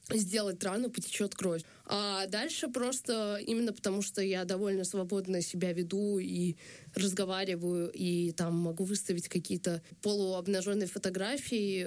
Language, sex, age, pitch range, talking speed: Russian, female, 20-39, 190-230 Hz, 120 wpm